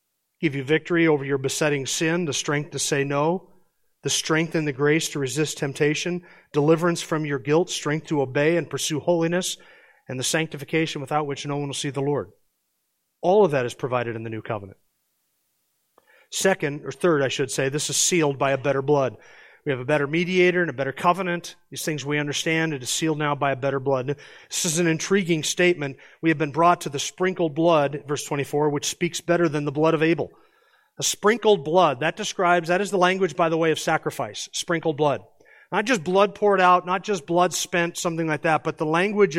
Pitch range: 150-185 Hz